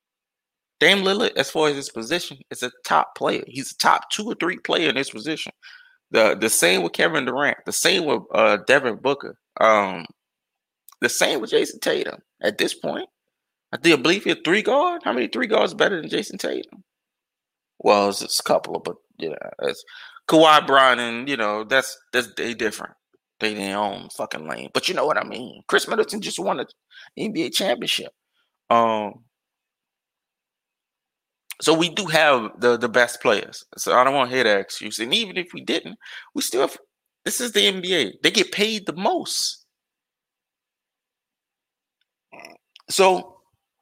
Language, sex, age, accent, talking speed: English, male, 20-39, American, 175 wpm